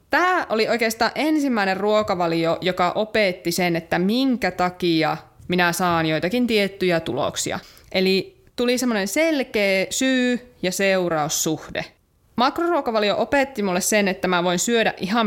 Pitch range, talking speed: 175-235 Hz, 125 wpm